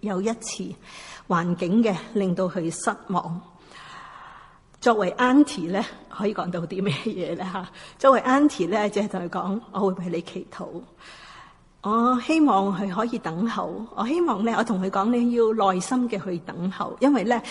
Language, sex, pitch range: Chinese, female, 190-235 Hz